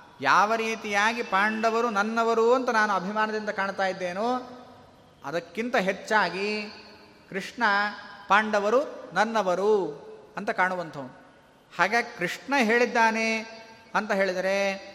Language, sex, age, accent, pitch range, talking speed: Kannada, male, 30-49, native, 185-225 Hz, 85 wpm